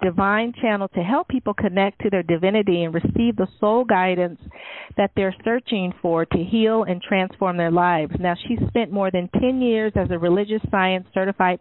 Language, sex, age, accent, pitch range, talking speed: English, female, 40-59, American, 180-220 Hz, 185 wpm